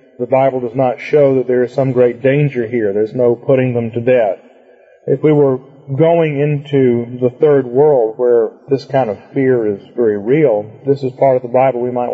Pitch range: 125-150 Hz